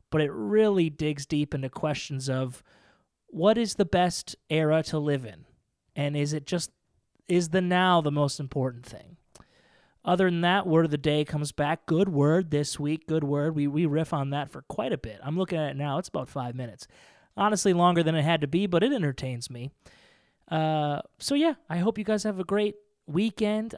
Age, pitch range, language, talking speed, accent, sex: 30-49, 145-185 Hz, English, 205 wpm, American, male